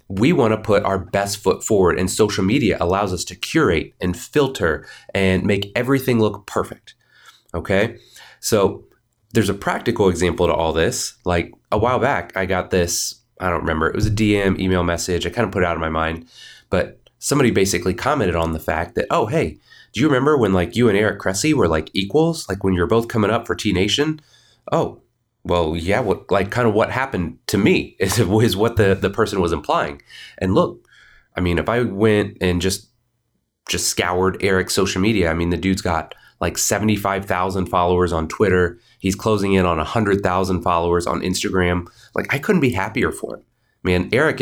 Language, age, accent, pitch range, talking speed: English, 30-49, American, 90-110 Hz, 200 wpm